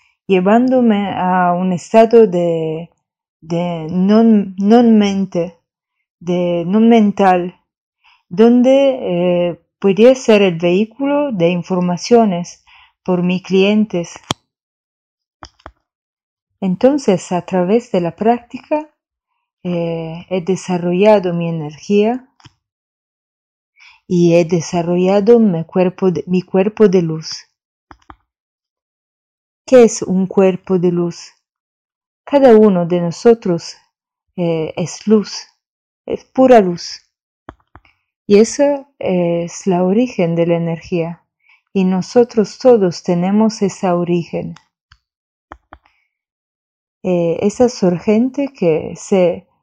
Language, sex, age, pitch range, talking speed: English, female, 30-49, 175-220 Hz, 95 wpm